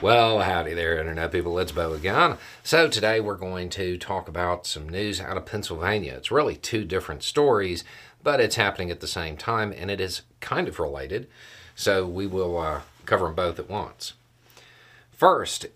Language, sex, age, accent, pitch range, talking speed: English, male, 40-59, American, 90-120 Hz, 185 wpm